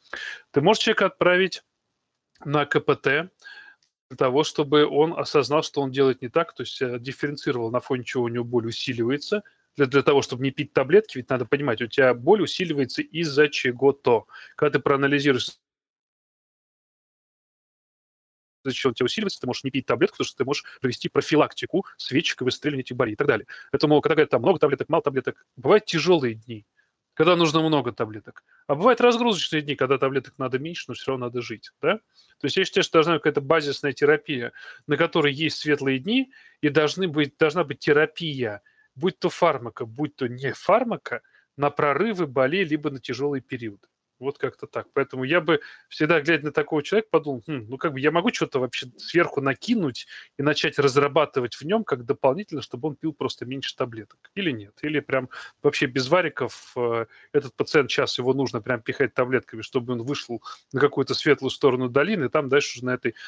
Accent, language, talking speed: native, Russian, 185 wpm